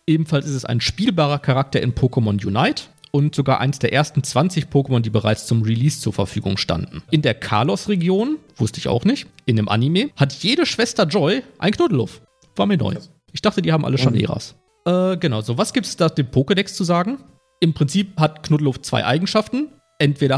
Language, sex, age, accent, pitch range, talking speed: German, male, 40-59, German, 120-170 Hz, 200 wpm